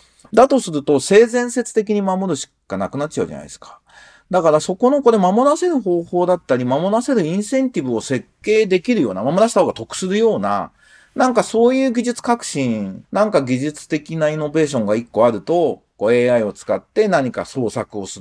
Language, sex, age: Japanese, male, 40-59